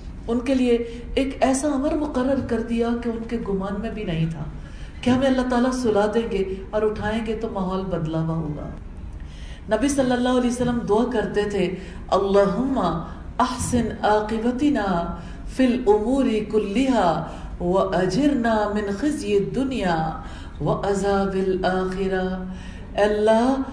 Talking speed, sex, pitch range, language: 120 wpm, female, 190-250 Hz, English